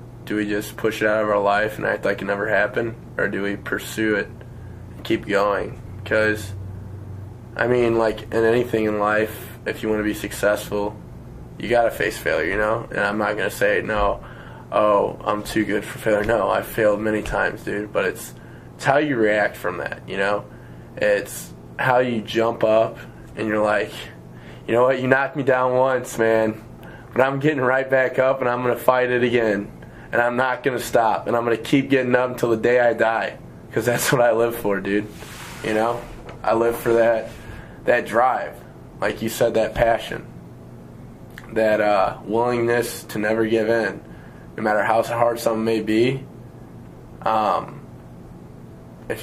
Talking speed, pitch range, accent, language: 190 wpm, 105-120 Hz, American, English